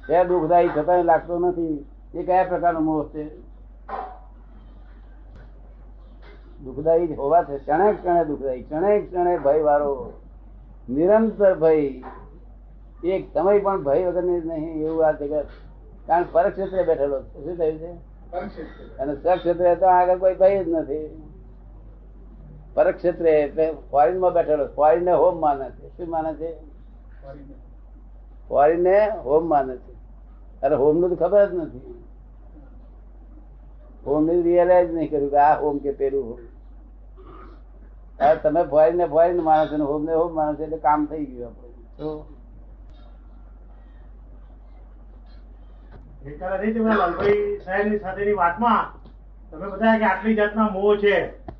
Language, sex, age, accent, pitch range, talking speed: Gujarati, male, 60-79, native, 150-185 Hz, 80 wpm